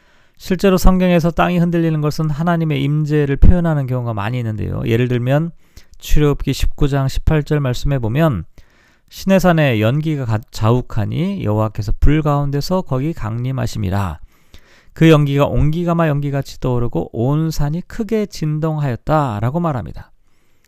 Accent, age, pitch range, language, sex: native, 40-59, 120-160 Hz, Korean, male